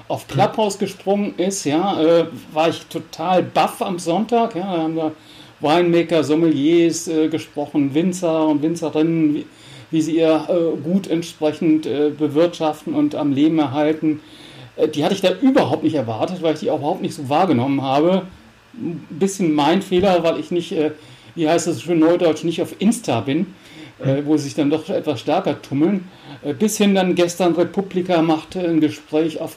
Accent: German